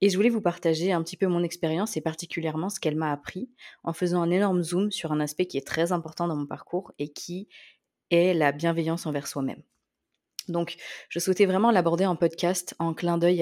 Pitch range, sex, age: 155-185 Hz, female, 20-39